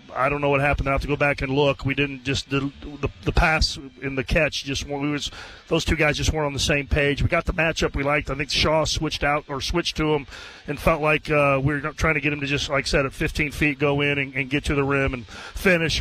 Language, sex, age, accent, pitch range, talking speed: English, male, 40-59, American, 135-155 Hz, 285 wpm